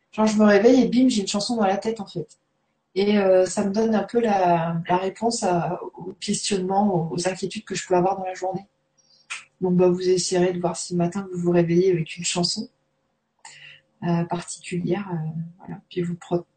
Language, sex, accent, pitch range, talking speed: French, female, French, 190-235 Hz, 210 wpm